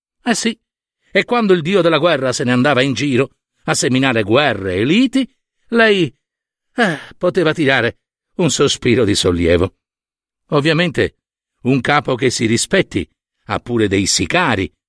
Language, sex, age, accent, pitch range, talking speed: Italian, male, 60-79, native, 125-190 Hz, 155 wpm